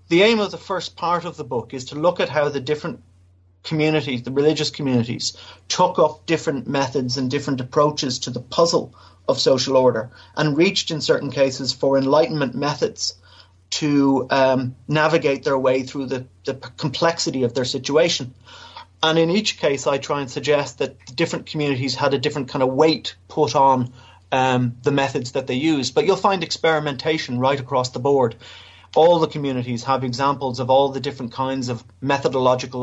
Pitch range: 125-150 Hz